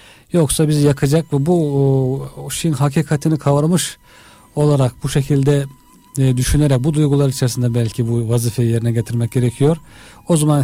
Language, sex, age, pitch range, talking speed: Turkish, male, 40-59, 120-150 Hz, 130 wpm